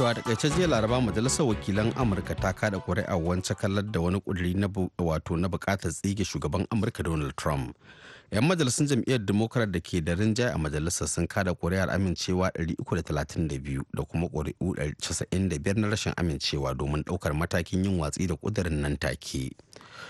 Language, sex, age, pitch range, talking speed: English, male, 30-49, 85-115 Hz, 115 wpm